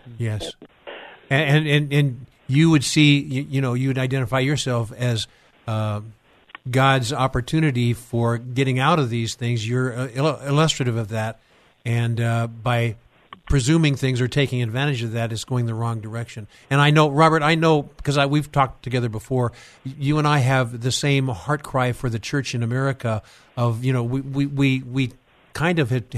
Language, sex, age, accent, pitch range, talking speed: English, male, 50-69, American, 120-135 Hz, 180 wpm